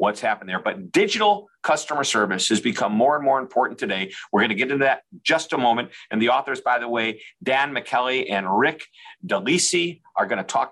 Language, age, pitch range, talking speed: English, 50-69, 130-185 Hz, 220 wpm